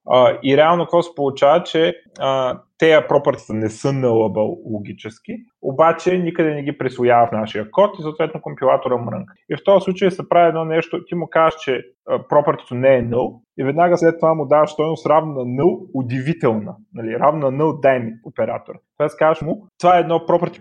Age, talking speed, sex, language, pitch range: 30-49, 190 wpm, male, Bulgarian, 130-175 Hz